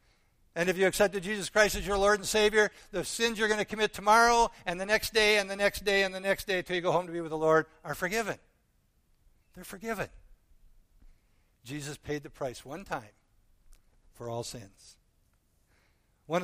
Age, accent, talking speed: 60-79, American, 195 wpm